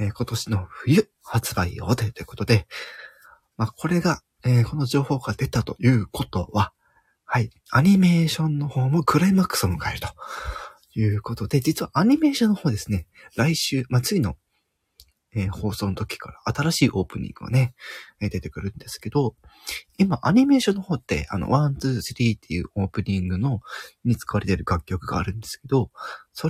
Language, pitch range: Japanese, 100-155 Hz